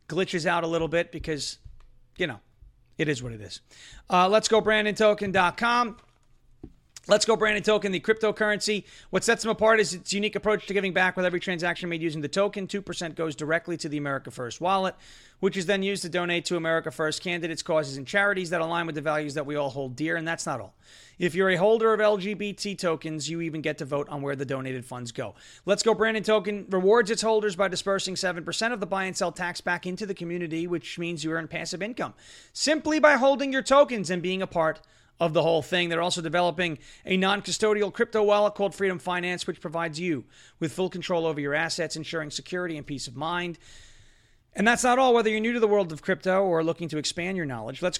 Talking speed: 220 wpm